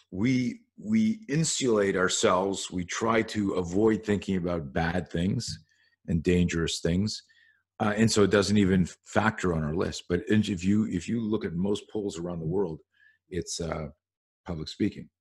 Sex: male